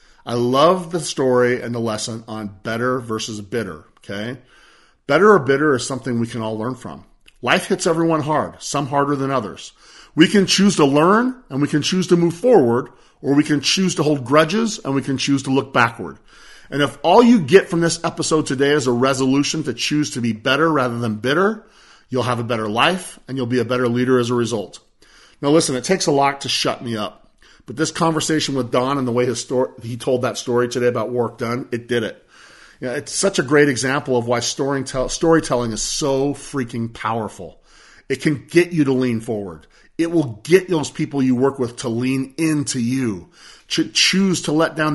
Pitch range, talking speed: 120-150 Hz, 215 wpm